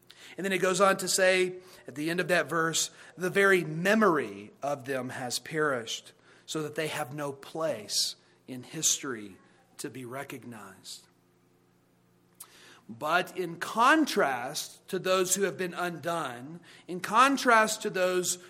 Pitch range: 150-205 Hz